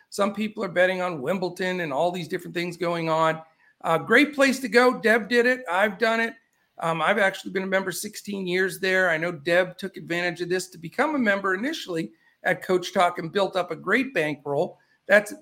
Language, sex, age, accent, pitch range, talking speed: English, male, 50-69, American, 165-215 Hz, 215 wpm